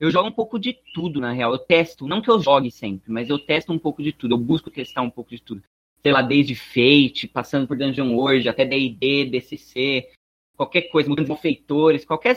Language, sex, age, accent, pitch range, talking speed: Portuguese, male, 20-39, Brazilian, 125-170 Hz, 220 wpm